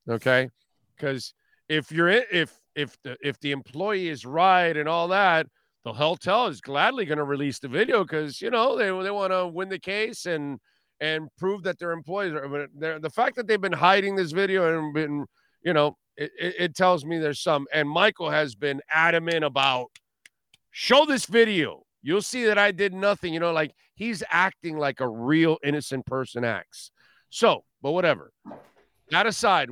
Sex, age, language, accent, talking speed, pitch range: male, 50-69, English, American, 185 wpm, 135-170 Hz